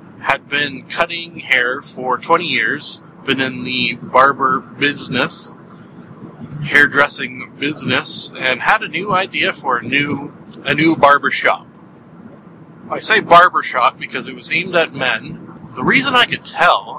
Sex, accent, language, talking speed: male, American, English, 145 wpm